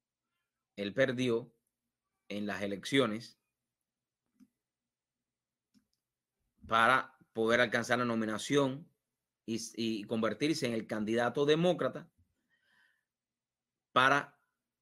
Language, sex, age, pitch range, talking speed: English, male, 30-49, 115-165 Hz, 75 wpm